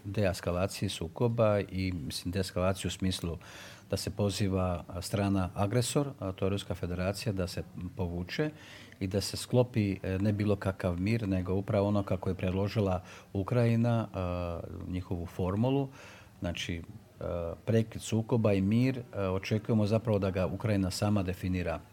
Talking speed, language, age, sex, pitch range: 130 wpm, Croatian, 50-69, male, 95-105 Hz